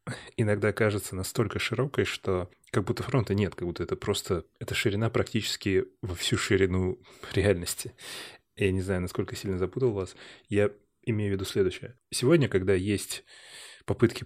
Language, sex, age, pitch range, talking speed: Russian, male, 20-39, 95-120 Hz, 150 wpm